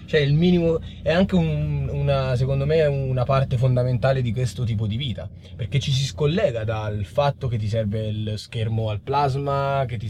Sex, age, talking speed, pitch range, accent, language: male, 20-39, 190 wpm, 110-140 Hz, native, Italian